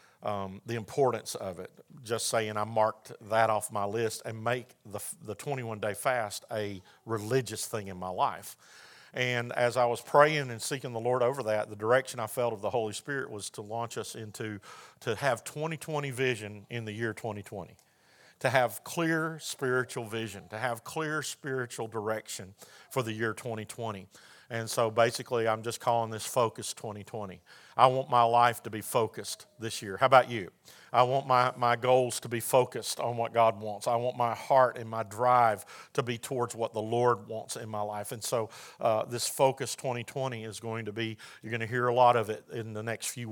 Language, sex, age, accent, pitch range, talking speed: English, male, 50-69, American, 110-125 Hz, 200 wpm